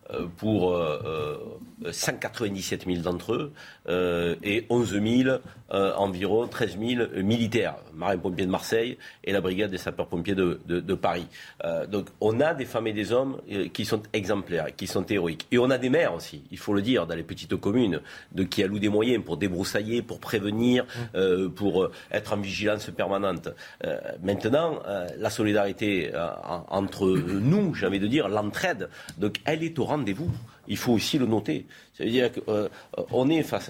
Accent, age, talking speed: French, 50-69, 175 wpm